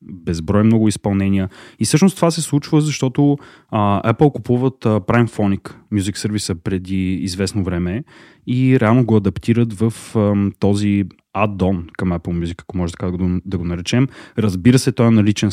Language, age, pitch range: Bulgarian, 20-39, 95-125 Hz